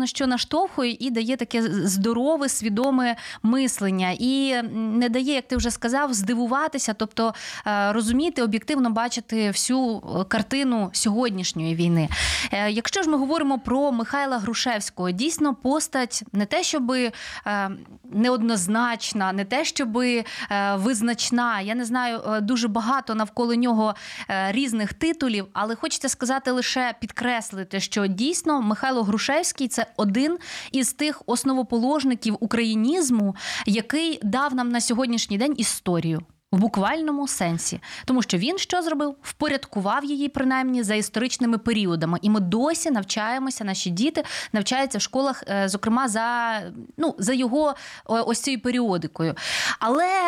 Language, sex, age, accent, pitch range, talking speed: Ukrainian, female, 20-39, native, 215-275 Hz, 125 wpm